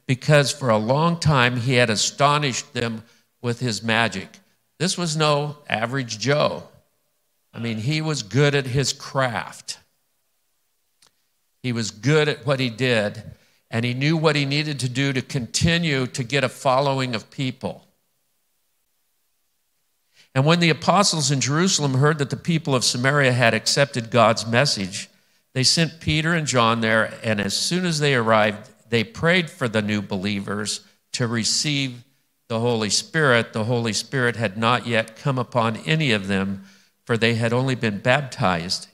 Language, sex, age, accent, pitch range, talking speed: English, male, 50-69, American, 115-145 Hz, 160 wpm